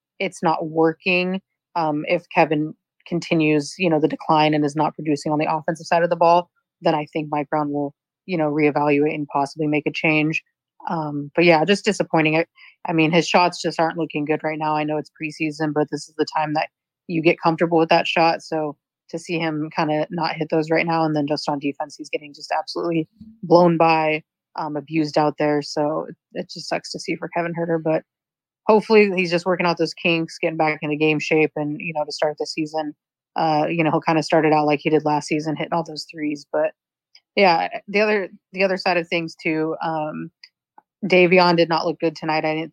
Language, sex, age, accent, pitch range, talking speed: English, female, 30-49, American, 150-170 Hz, 225 wpm